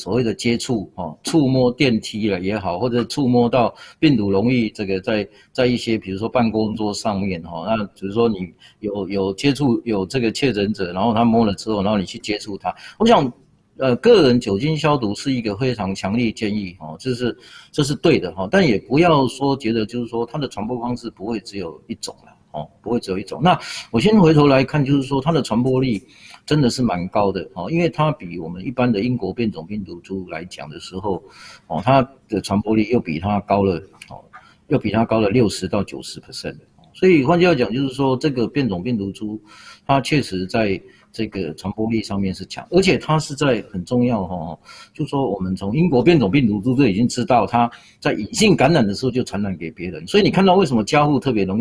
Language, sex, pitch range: Chinese, male, 100-135 Hz